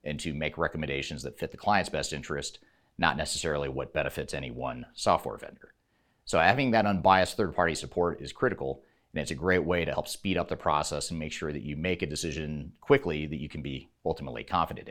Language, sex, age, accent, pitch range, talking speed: English, male, 30-49, American, 70-90 Hz, 210 wpm